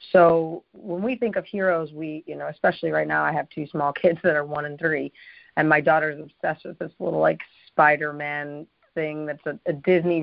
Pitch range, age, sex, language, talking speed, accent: 160-185 Hz, 30-49, female, English, 210 wpm, American